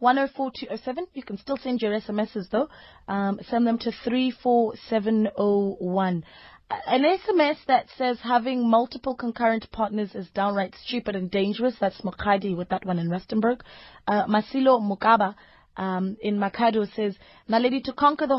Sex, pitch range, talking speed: female, 220-270 Hz, 145 wpm